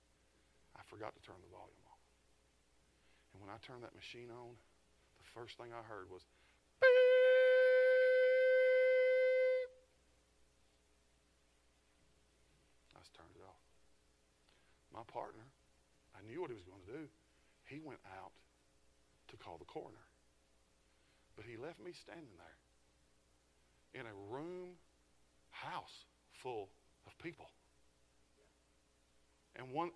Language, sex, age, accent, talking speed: English, male, 50-69, American, 115 wpm